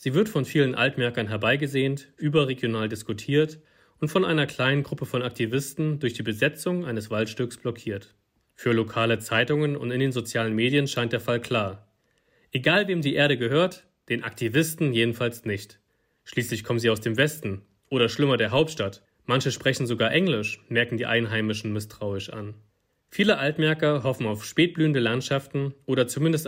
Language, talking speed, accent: German, 155 wpm, German